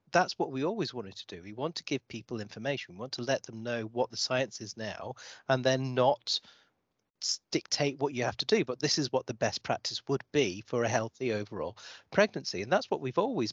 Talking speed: 230 wpm